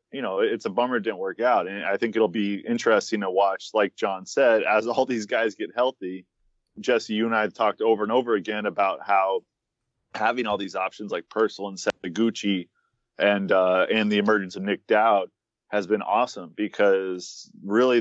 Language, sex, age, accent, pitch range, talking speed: English, male, 20-39, American, 95-110 Hz, 205 wpm